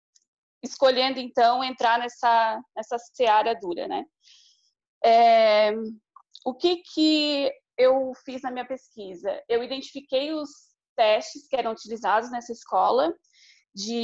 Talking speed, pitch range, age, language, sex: 115 wpm, 235-280 Hz, 20-39, Portuguese, female